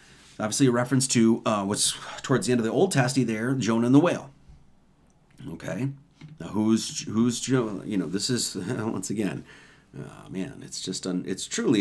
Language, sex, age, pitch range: English, male, 40-59, 95-135 Hz